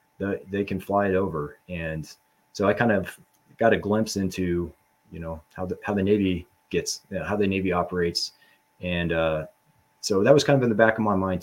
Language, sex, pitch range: English, male, 90-110 Hz